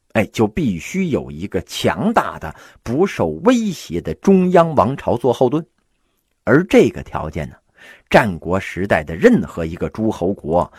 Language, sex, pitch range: Chinese, male, 85-140 Hz